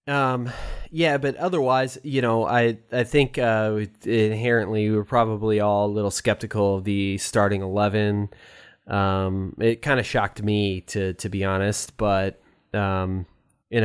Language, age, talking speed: English, 20-39, 150 wpm